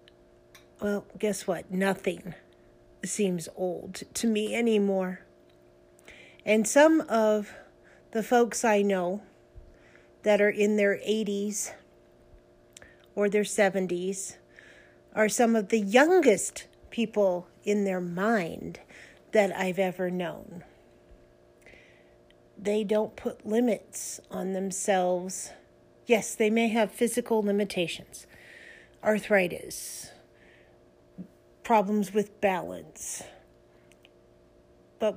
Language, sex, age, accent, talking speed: English, female, 50-69, American, 90 wpm